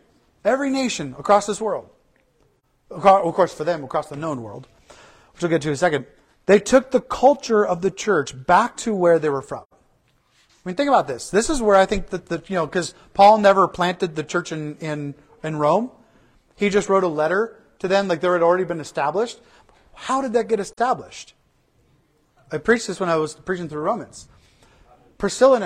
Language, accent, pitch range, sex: English, American, 155-205 Hz, male